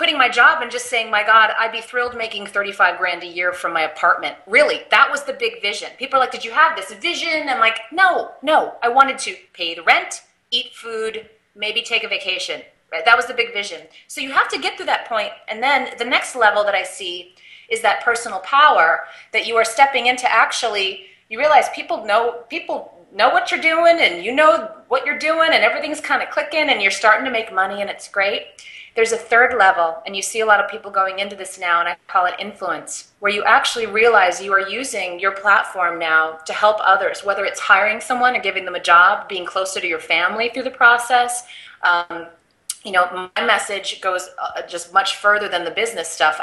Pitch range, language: 190-275 Hz, English